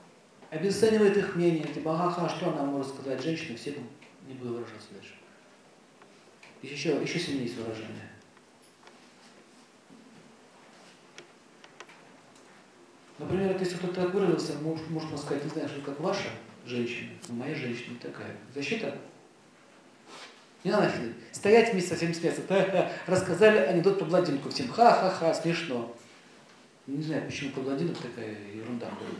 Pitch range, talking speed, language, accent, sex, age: 125-180 Hz, 125 wpm, Russian, native, male, 40-59